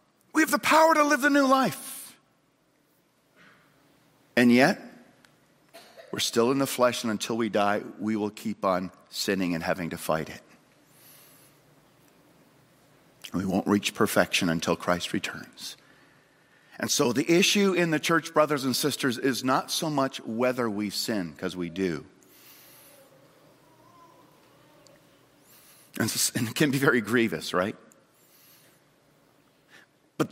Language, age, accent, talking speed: English, 50-69, American, 130 wpm